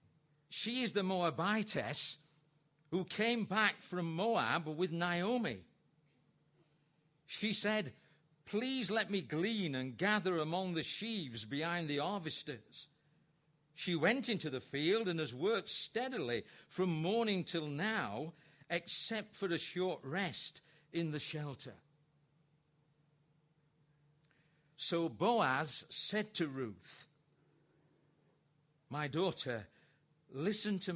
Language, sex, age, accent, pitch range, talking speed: English, male, 50-69, British, 150-180 Hz, 105 wpm